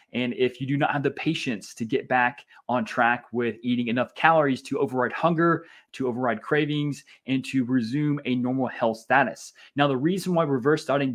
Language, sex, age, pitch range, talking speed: English, male, 20-39, 125-150 Hz, 195 wpm